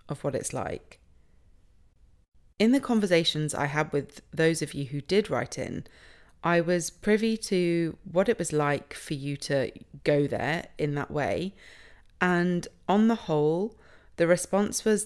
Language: English